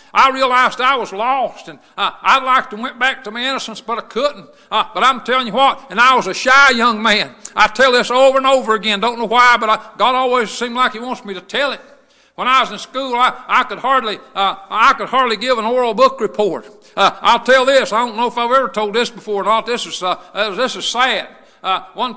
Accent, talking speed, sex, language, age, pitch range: American, 255 wpm, male, English, 60-79, 220-255 Hz